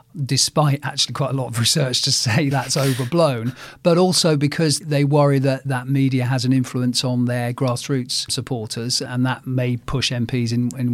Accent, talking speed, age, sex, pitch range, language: British, 180 wpm, 40-59, male, 125-150 Hz, English